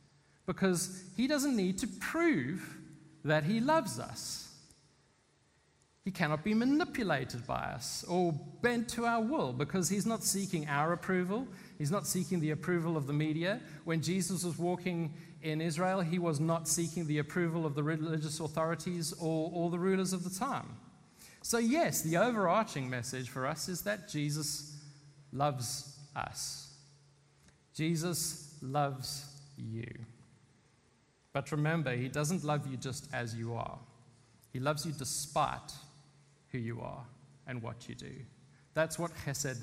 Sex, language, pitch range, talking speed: male, English, 140-170 Hz, 145 wpm